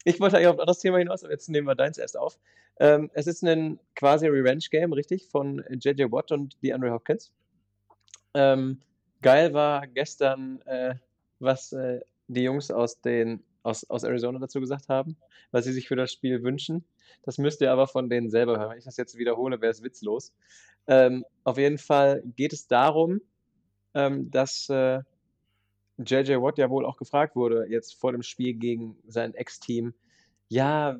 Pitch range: 120-140 Hz